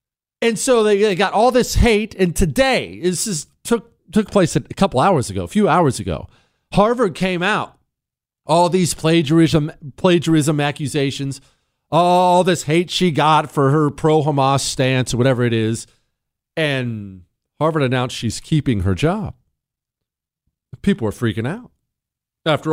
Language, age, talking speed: English, 40-59, 150 wpm